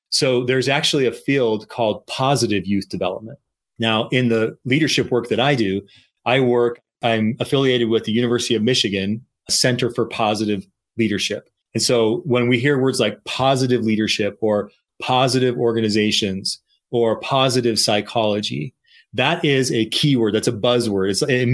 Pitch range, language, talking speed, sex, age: 110-130 Hz, English, 150 wpm, male, 30-49